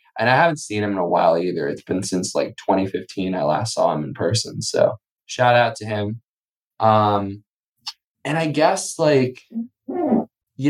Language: English